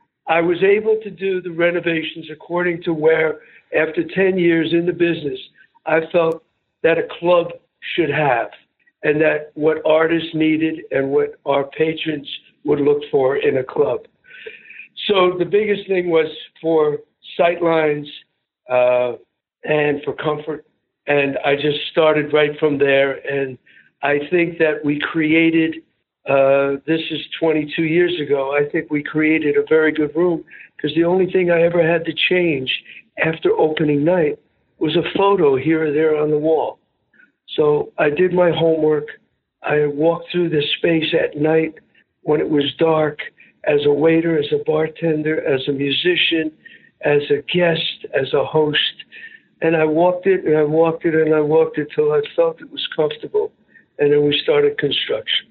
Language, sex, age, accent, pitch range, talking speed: English, male, 60-79, American, 150-180 Hz, 165 wpm